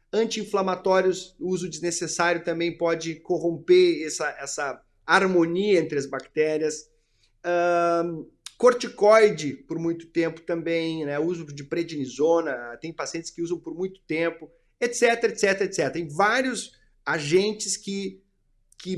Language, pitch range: Portuguese, 165-215 Hz